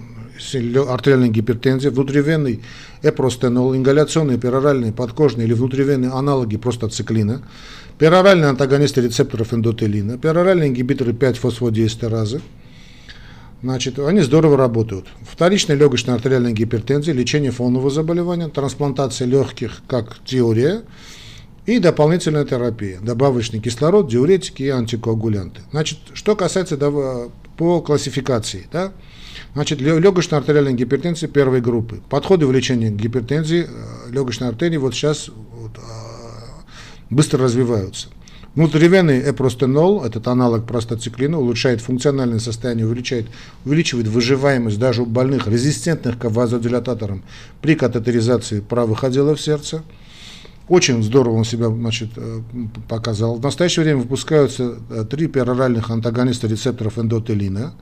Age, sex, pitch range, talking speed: 50-69, male, 115-145 Hz, 105 wpm